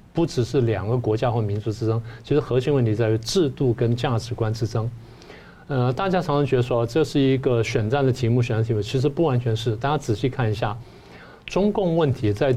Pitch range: 110-140 Hz